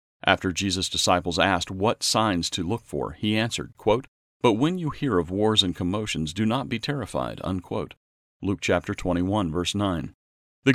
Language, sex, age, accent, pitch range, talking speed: English, male, 50-69, American, 85-110 Hz, 175 wpm